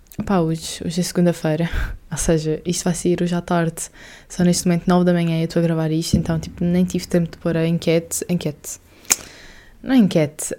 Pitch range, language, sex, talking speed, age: 170-195 Hz, Portuguese, female, 210 wpm, 20-39